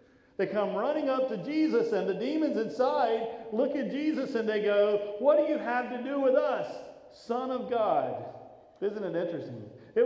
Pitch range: 150-205 Hz